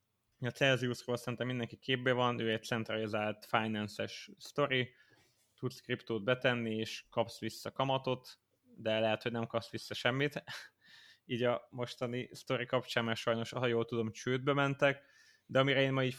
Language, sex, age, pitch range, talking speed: Hungarian, male, 20-39, 115-130 Hz, 155 wpm